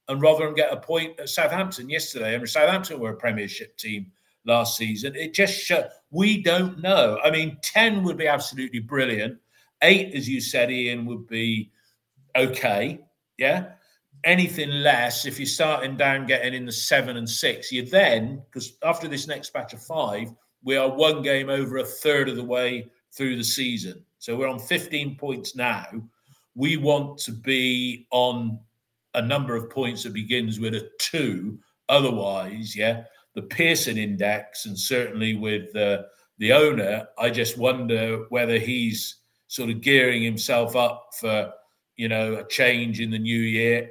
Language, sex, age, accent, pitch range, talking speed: English, male, 50-69, British, 115-140 Hz, 170 wpm